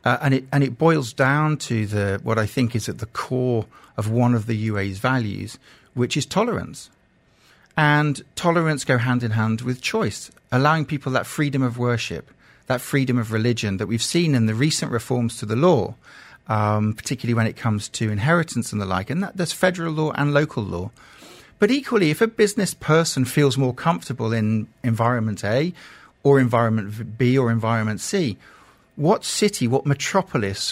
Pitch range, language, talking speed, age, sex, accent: 115-155 Hz, English, 185 wpm, 40-59, male, British